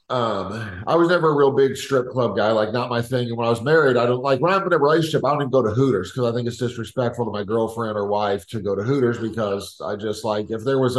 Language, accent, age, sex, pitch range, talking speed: English, American, 50-69, male, 115-135 Hz, 295 wpm